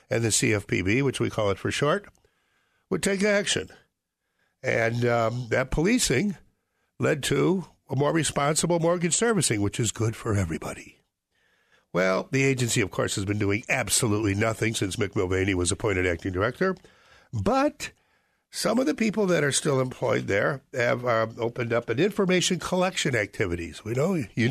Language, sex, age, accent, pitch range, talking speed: English, male, 60-79, American, 110-170 Hz, 160 wpm